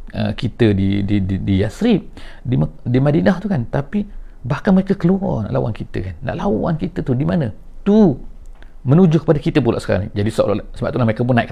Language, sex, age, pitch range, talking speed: English, male, 50-69, 100-130 Hz, 205 wpm